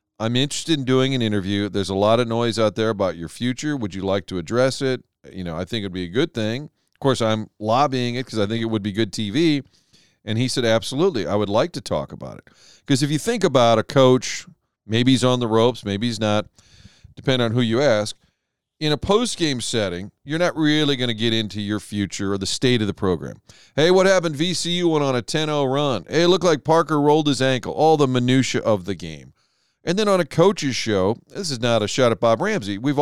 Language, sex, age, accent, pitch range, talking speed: English, male, 40-59, American, 105-145 Hz, 240 wpm